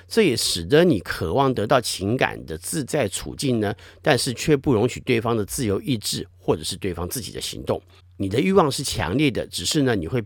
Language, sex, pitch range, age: Chinese, male, 95-150 Hz, 50-69